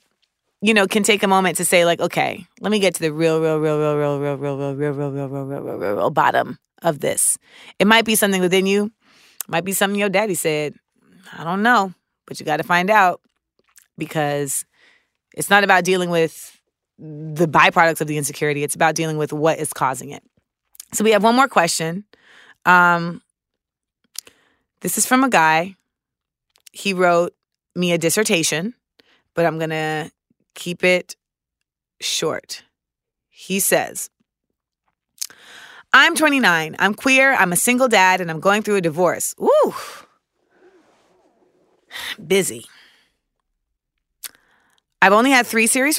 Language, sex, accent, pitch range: English, female, American, 160-225 Hz